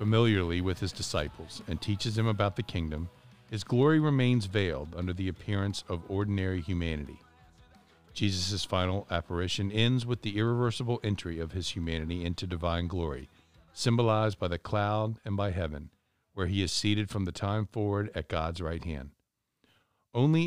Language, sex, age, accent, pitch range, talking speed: English, male, 50-69, American, 85-110 Hz, 160 wpm